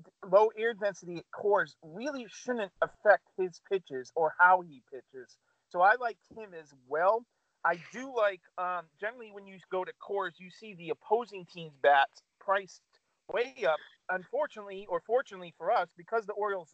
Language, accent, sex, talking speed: English, American, male, 170 wpm